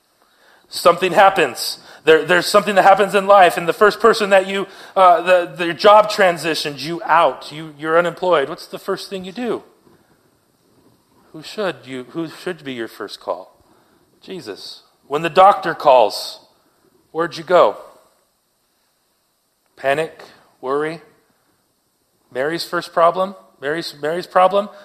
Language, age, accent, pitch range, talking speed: English, 40-59, American, 150-195 Hz, 135 wpm